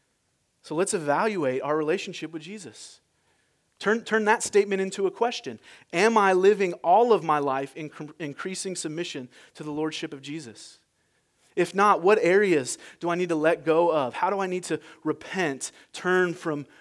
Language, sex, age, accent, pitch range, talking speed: English, male, 30-49, American, 140-185 Hz, 170 wpm